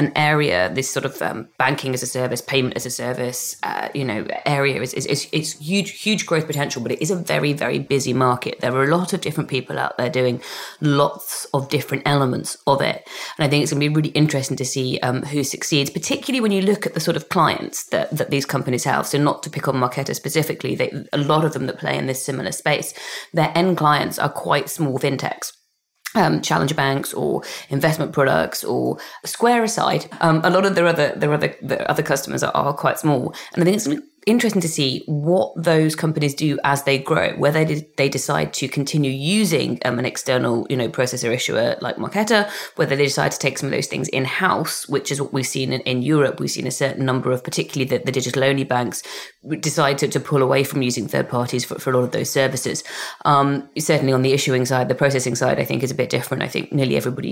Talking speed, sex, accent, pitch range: 230 wpm, female, British, 130-155 Hz